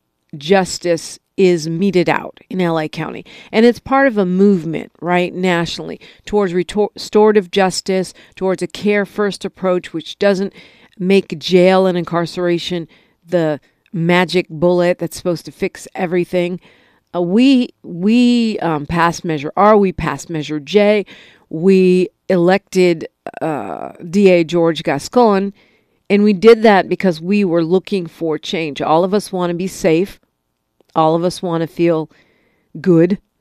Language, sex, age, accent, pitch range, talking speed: English, female, 50-69, American, 165-190 Hz, 140 wpm